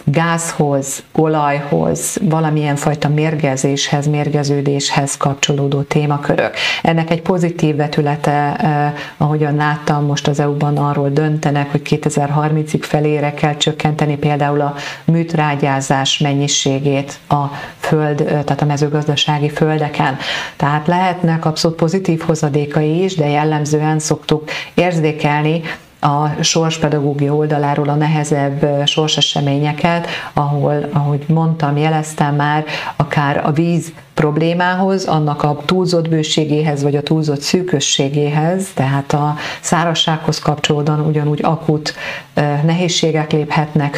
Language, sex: Hungarian, female